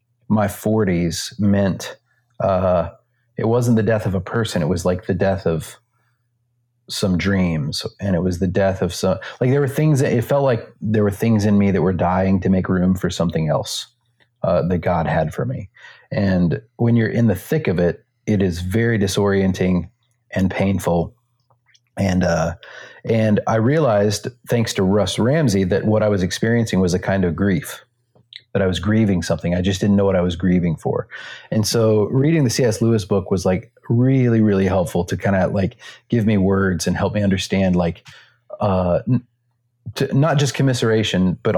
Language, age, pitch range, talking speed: English, 30-49, 95-120 Hz, 190 wpm